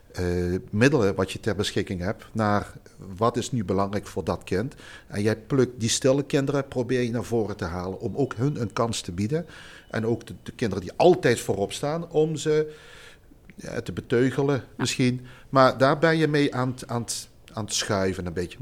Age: 50-69